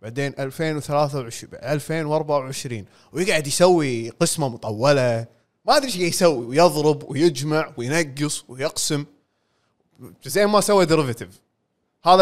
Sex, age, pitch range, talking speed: male, 20-39, 135-195 Hz, 100 wpm